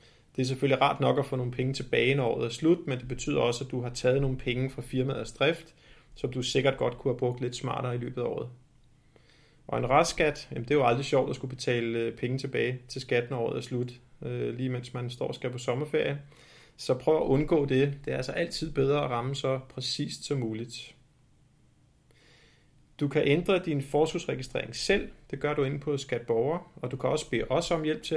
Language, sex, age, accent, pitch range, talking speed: Danish, male, 30-49, native, 125-145 Hz, 220 wpm